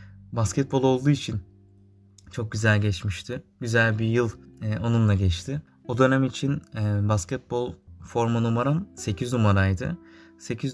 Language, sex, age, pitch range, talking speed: Turkish, male, 20-39, 105-130 Hz, 110 wpm